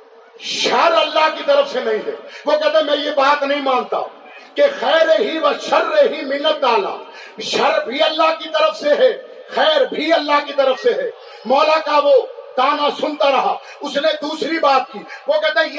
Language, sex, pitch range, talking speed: Urdu, male, 280-320 Hz, 180 wpm